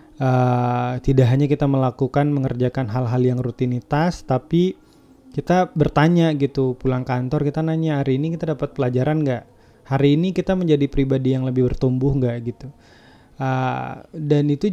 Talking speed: 145 wpm